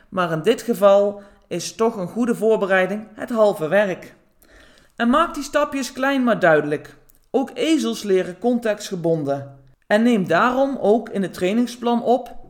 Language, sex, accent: Dutch, male, Dutch